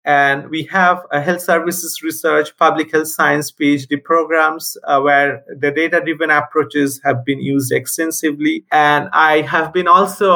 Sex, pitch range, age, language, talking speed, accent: male, 135-170 Hz, 50-69, English, 150 wpm, Indian